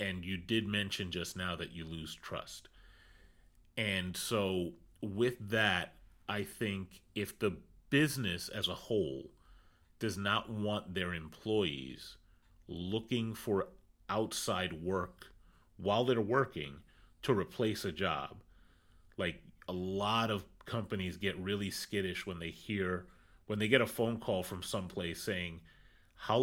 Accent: American